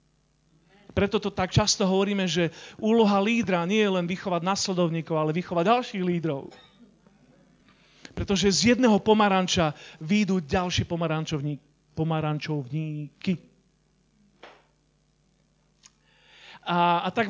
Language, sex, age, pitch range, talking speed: Slovak, male, 40-59, 165-215 Hz, 95 wpm